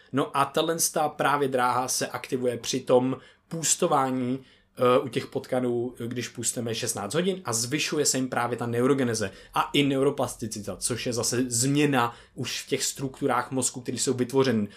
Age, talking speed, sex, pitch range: 20-39, 165 wpm, male, 125-150 Hz